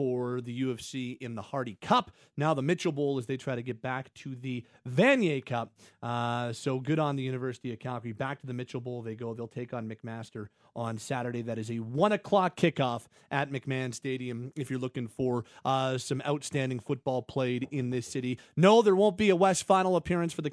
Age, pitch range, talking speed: 30-49, 130-190 Hz, 215 wpm